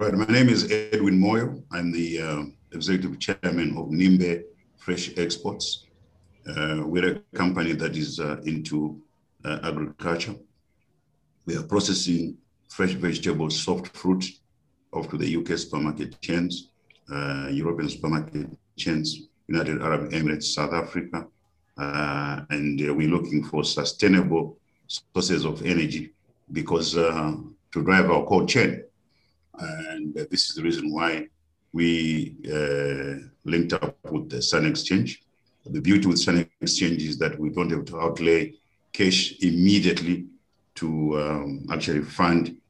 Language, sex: English, male